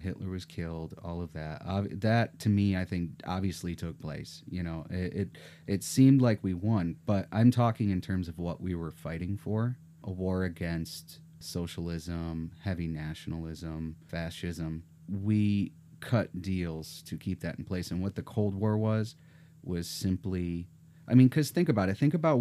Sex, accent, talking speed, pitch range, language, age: male, American, 175 wpm, 85-110 Hz, English, 30-49